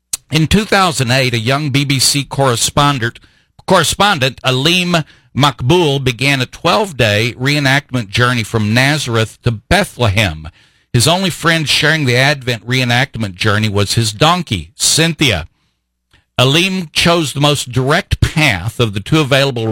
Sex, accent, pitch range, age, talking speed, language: male, American, 115-150 Hz, 50-69, 120 wpm, English